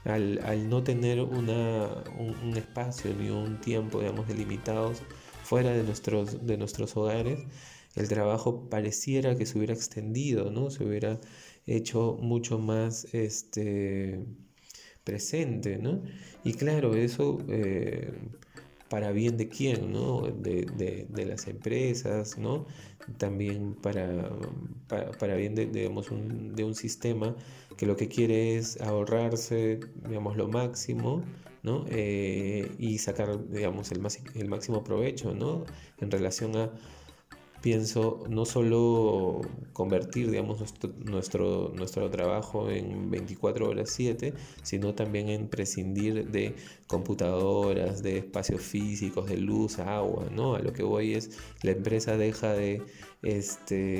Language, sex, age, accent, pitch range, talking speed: Spanish, male, 20-39, Argentinian, 100-115 Hz, 135 wpm